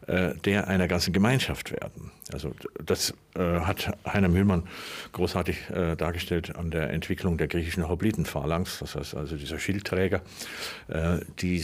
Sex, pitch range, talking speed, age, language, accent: male, 90-105 Hz, 125 wpm, 50-69, German, German